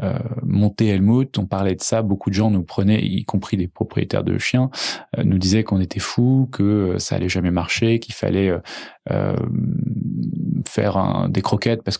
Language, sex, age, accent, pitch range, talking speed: English, male, 20-39, French, 95-110 Hz, 195 wpm